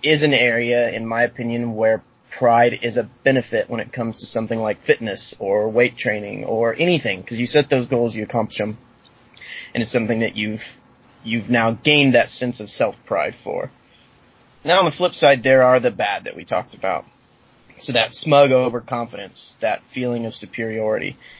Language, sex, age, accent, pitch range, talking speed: English, male, 20-39, American, 115-130 Hz, 185 wpm